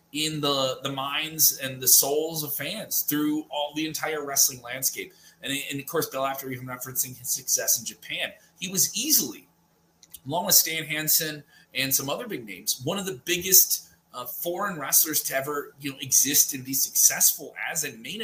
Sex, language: male, English